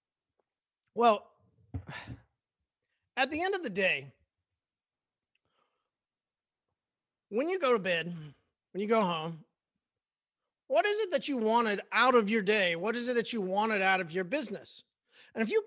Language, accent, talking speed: English, American, 150 wpm